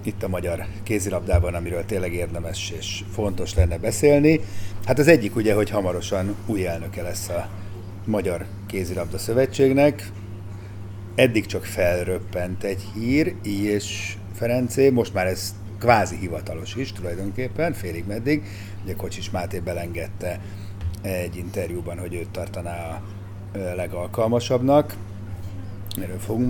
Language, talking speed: Hungarian, 120 wpm